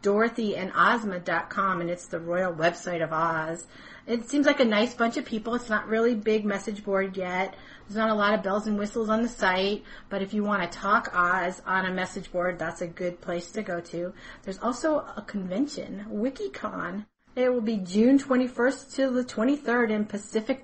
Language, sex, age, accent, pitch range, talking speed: English, female, 40-59, American, 195-255 Hz, 195 wpm